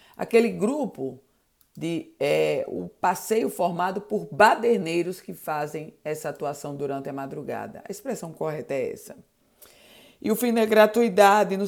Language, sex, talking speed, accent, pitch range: Portuguese, female, 130 wpm, Brazilian, 160-200 Hz